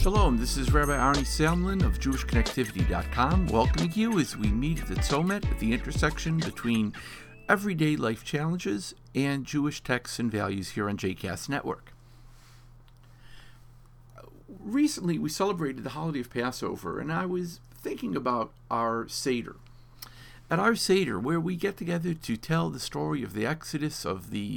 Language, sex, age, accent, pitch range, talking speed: English, male, 50-69, American, 120-165 Hz, 155 wpm